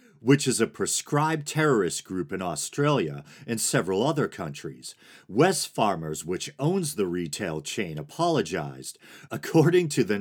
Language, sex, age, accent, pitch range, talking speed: English, male, 40-59, American, 100-150 Hz, 135 wpm